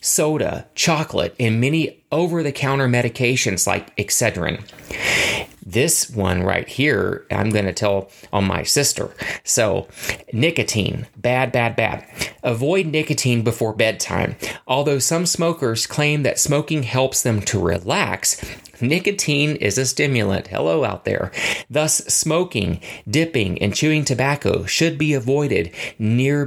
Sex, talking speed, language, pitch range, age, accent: male, 125 wpm, English, 110-145 Hz, 30-49, American